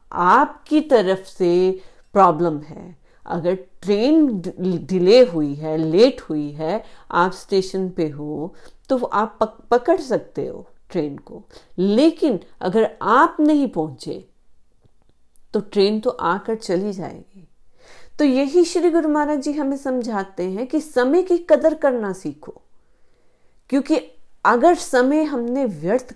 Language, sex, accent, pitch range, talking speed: Hindi, female, native, 170-265 Hz, 125 wpm